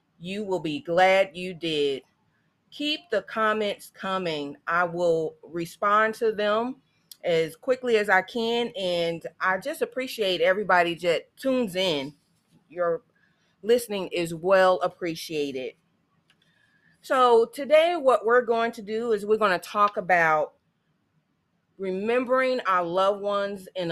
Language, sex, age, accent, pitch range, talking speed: English, female, 30-49, American, 175-220 Hz, 125 wpm